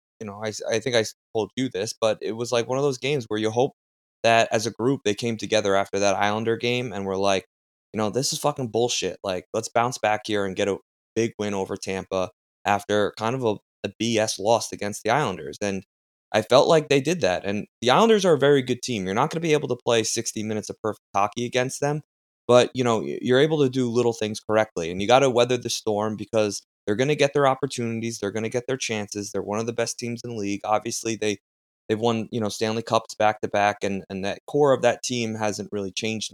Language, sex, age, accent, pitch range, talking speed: English, male, 20-39, American, 100-120 Hz, 250 wpm